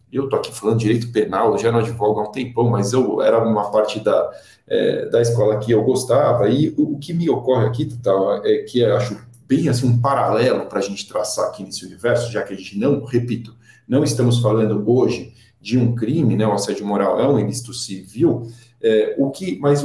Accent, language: Brazilian, Portuguese